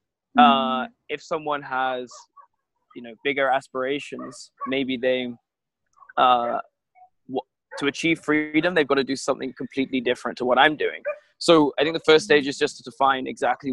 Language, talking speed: English, 155 wpm